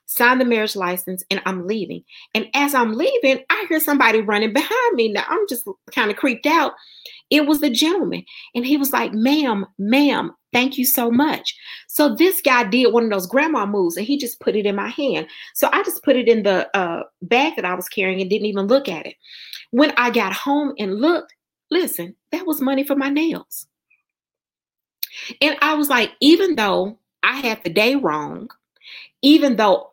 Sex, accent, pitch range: female, American, 200-290 Hz